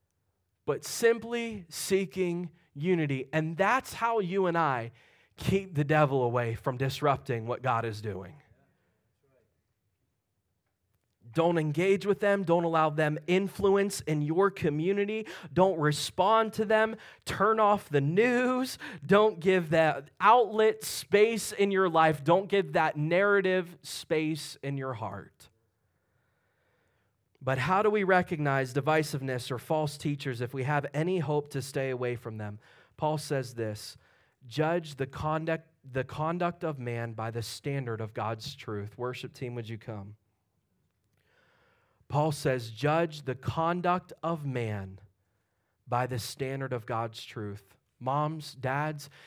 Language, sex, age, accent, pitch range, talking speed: English, male, 20-39, American, 120-170 Hz, 130 wpm